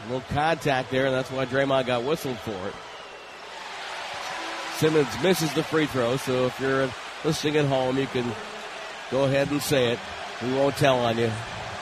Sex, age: male, 50-69